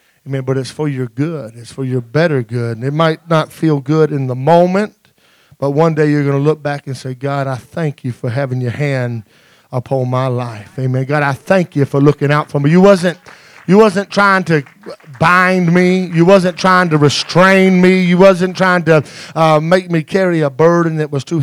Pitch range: 130-160 Hz